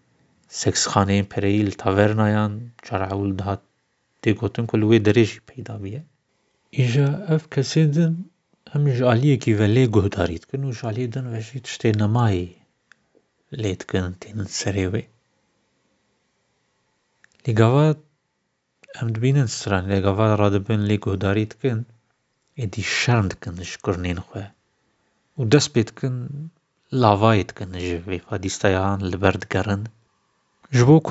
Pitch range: 100-125 Hz